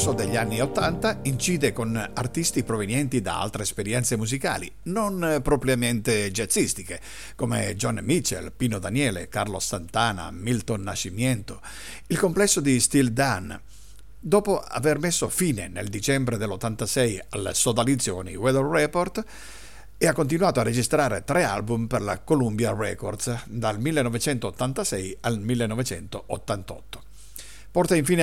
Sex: male